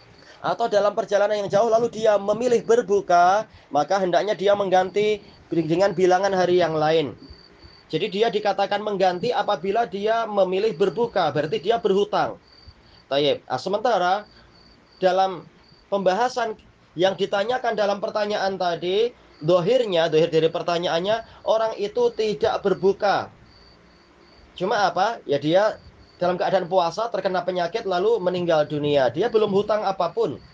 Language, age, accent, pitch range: Indonesian, 30-49, native, 180-220 Hz